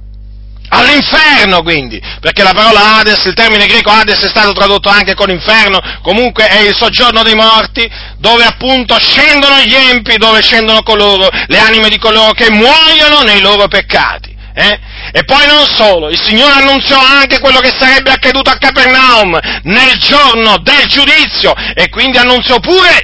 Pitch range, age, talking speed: 190-250 Hz, 40-59, 160 wpm